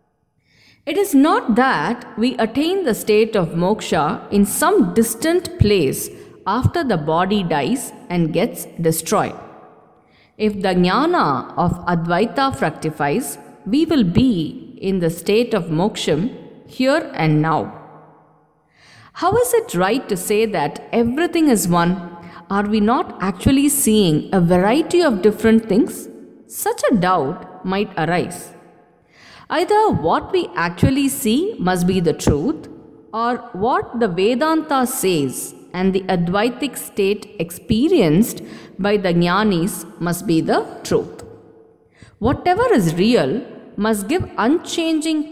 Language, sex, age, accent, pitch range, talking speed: English, female, 50-69, Indian, 185-275 Hz, 125 wpm